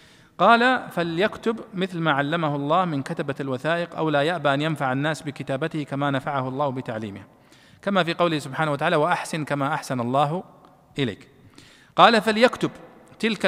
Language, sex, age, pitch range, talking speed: Arabic, male, 40-59, 135-185 Hz, 145 wpm